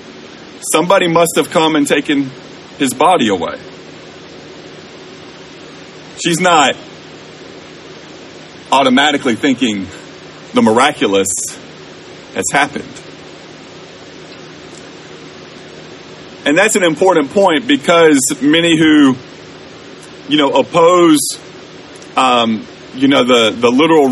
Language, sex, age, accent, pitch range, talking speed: English, male, 40-59, American, 110-170 Hz, 85 wpm